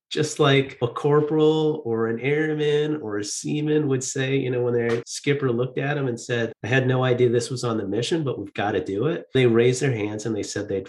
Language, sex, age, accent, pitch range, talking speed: English, male, 30-49, American, 110-145 Hz, 250 wpm